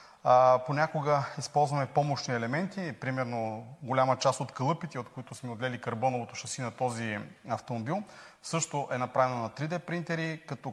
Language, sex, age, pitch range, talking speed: Bulgarian, male, 30-49, 125-155 Hz, 140 wpm